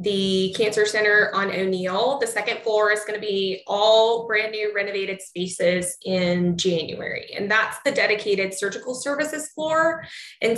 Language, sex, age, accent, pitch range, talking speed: English, female, 20-39, American, 195-245 Hz, 145 wpm